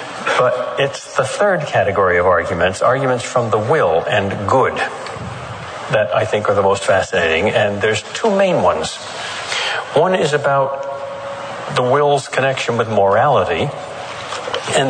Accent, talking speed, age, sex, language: American, 135 wpm, 60-79, male, English